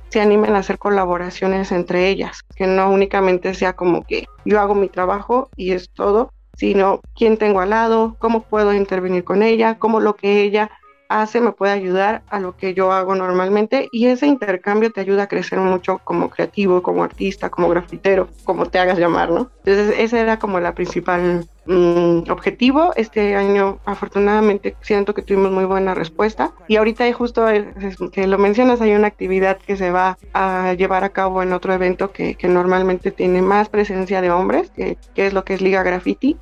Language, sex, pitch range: Spanish, female, 185-210 Hz